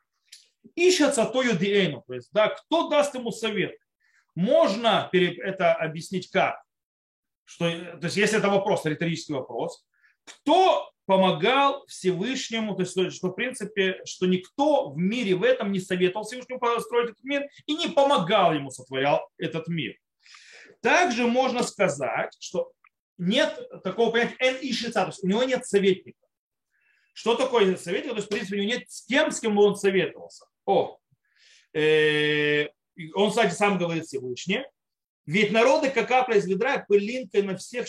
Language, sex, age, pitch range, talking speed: Russian, male, 30-49, 180-245 Hz, 150 wpm